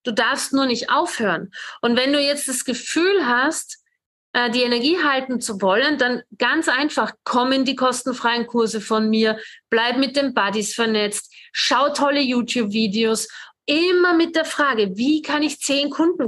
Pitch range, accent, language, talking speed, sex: 235-300 Hz, German, German, 160 wpm, female